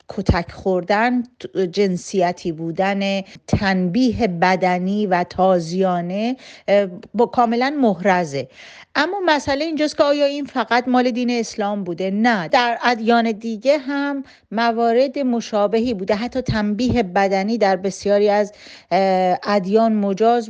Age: 40-59